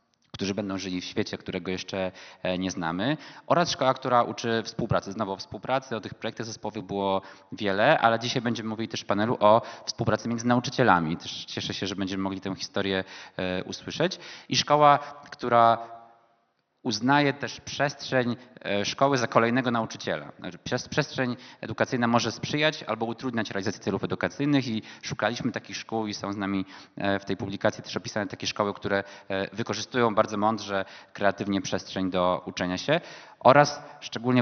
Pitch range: 95-115 Hz